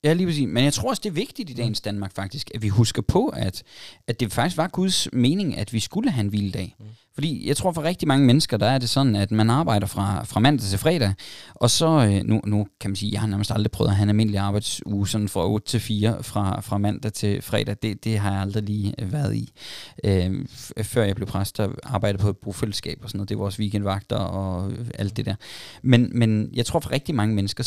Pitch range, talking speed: 105-140 Hz, 245 wpm